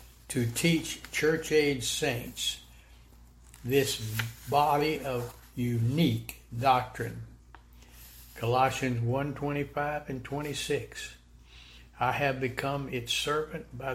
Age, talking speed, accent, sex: 60-79, 80 wpm, American, male